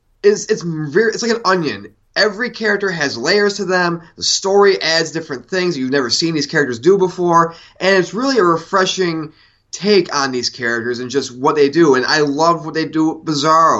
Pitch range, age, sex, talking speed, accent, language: 135-175 Hz, 20-39, male, 205 wpm, American, English